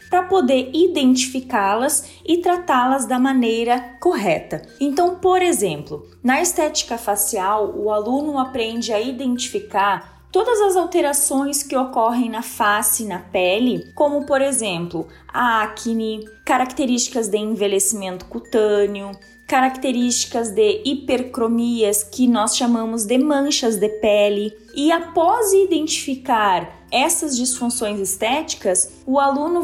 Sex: female